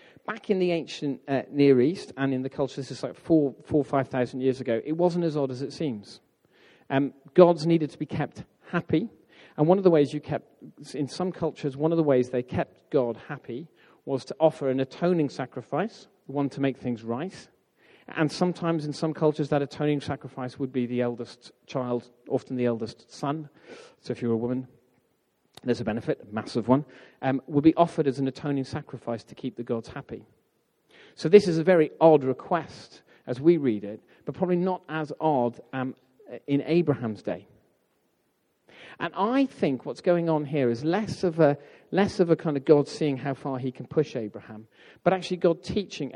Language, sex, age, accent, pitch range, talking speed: English, male, 40-59, British, 125-160 Hz, 195 wpm